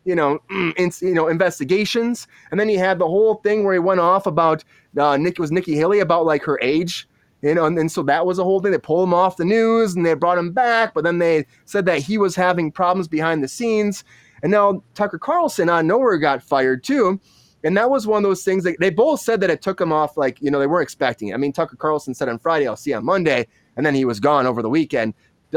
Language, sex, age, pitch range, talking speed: English, male, 20-39, 145-190 Hz, 265 wpm